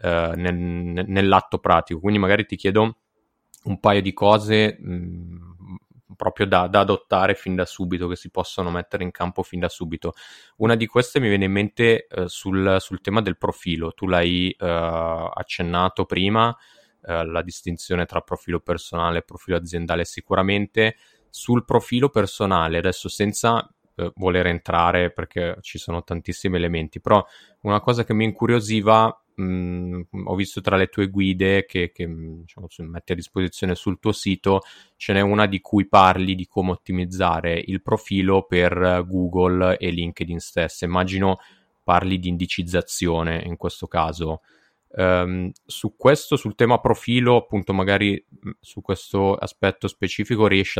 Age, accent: 20-39, native